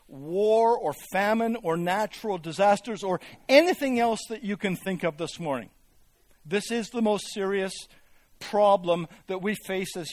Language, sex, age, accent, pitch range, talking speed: English, male, 60-79, American, 170-220 Hz, 155 wpm